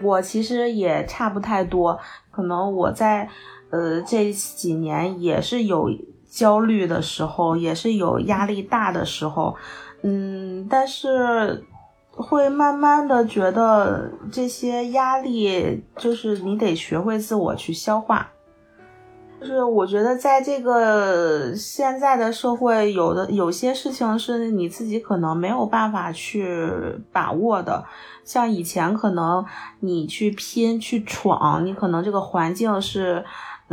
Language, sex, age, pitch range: Chinese, female, 30-49, 175-235 Hz